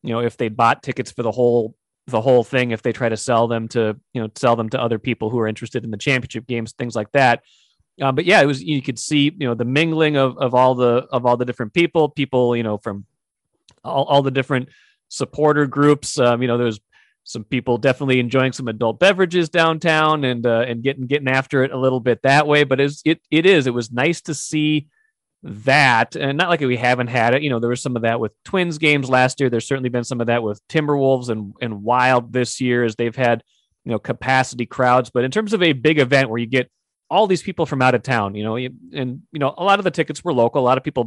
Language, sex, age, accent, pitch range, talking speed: English, male, 30-49, American, 120-140 Hz, 255 wpm